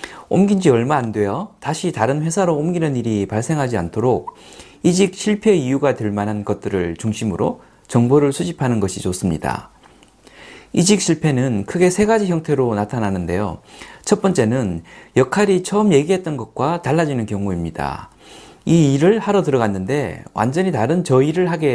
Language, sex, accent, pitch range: Korean, male, native, 110-180 Hz